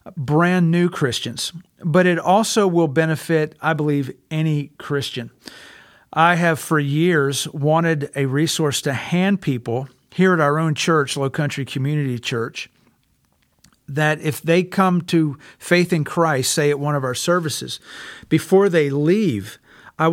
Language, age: English, 50-69